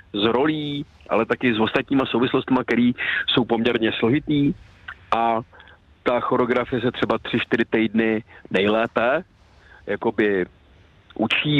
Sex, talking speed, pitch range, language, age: male, 105 wpm, 110-135 Hz, Czech, 40-59